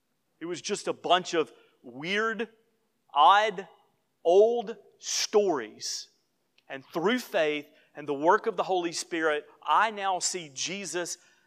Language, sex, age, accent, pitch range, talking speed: English, male, 40-59, American, 145-170 Hz, 125 wpm